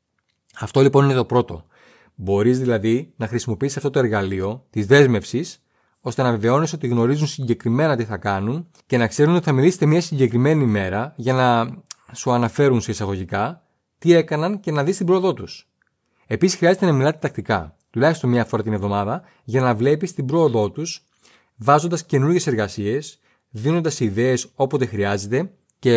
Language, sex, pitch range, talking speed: Greek, male, 110-150 Hz, 160 wpm